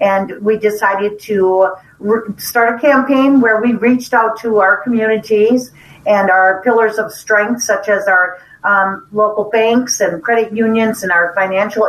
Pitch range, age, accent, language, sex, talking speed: 185-220 Hz, 50-69, American, English, female, 155 wpm